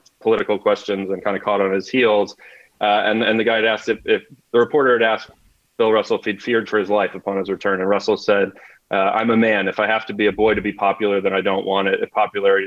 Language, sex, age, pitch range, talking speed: English, male, 30-49, 105-130 Hz, 270 wpm